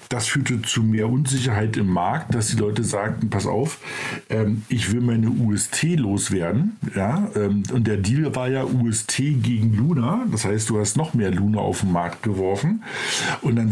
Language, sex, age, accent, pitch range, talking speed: German, male, 50-69, German, 105-135 Hz, 175 wpm